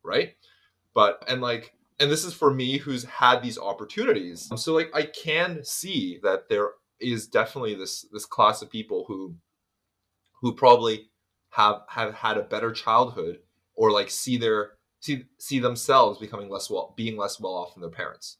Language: English